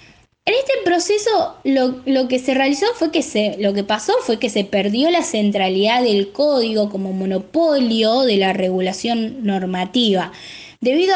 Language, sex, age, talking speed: Spanish, female, 10-29, 155 wpm